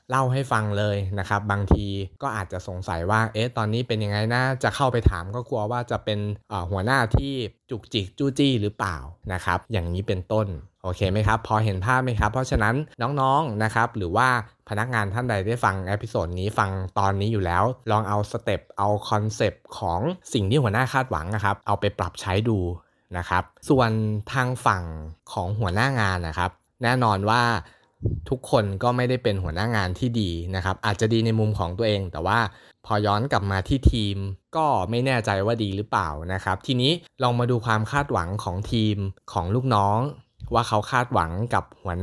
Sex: male